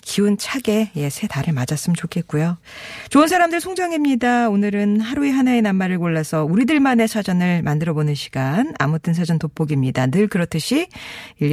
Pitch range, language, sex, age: 160-245 Hz, Korean, female, 40-59